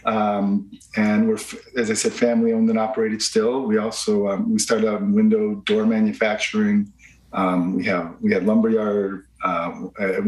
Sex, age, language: male, 40-59, English